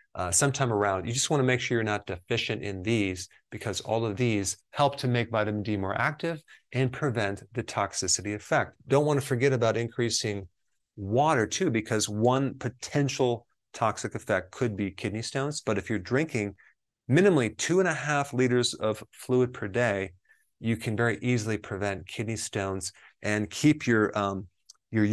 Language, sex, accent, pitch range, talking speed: English, male, American, 105-125 Hz, 175 wpm